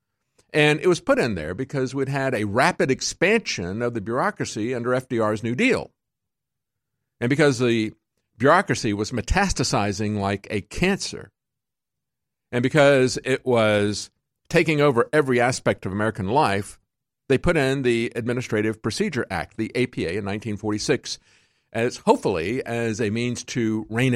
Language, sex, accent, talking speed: English, male, American, 140 wpm